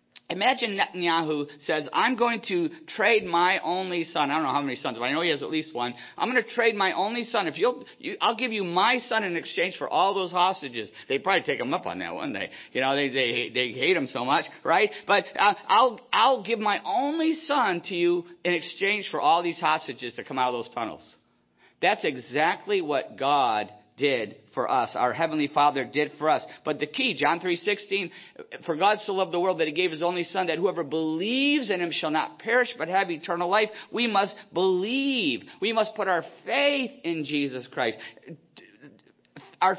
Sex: male